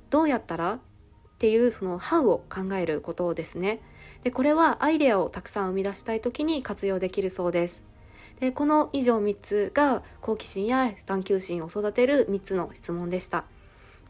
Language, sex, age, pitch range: Japanese, female, 20-39, 195-245 Hz